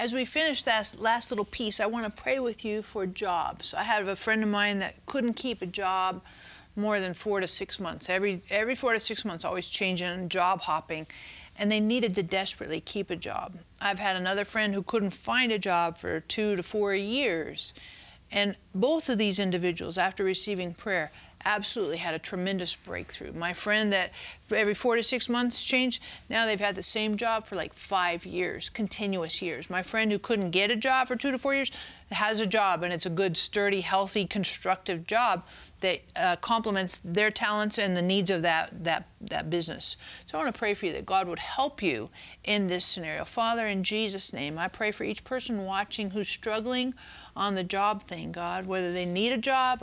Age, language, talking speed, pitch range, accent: 40-59, English, 205 wpm, 185-225 Hz, American